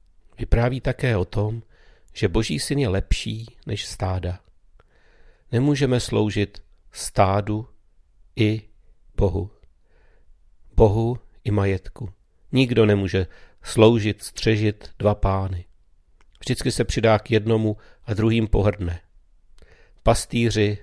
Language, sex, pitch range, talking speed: Czech, male, 90-115 Hz, 100 wpm